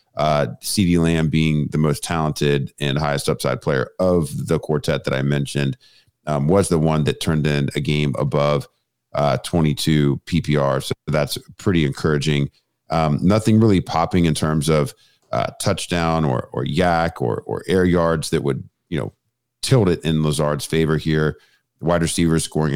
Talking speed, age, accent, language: 165 wpm, 40-59, American, English